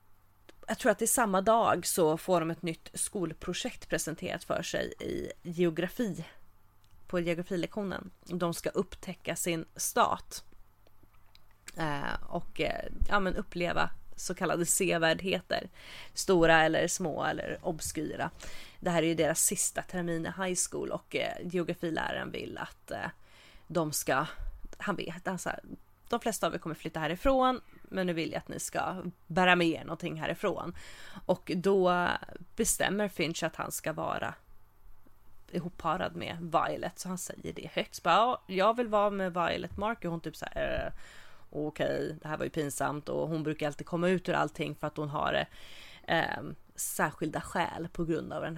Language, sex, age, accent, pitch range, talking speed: English, female, 30-49, Swedish, 160-185 Hz, 160 wpm